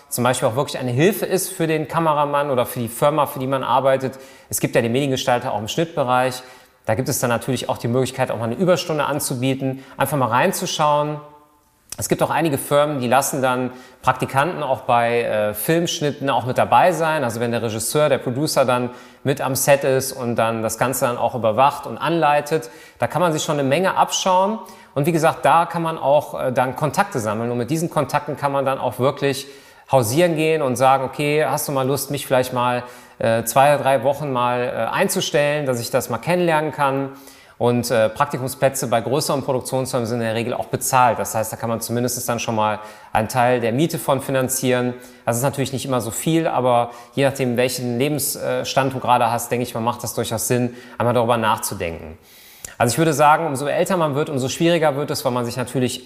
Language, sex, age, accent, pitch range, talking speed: German, male, 30-49, German, 125-150 Hz, 215 wpm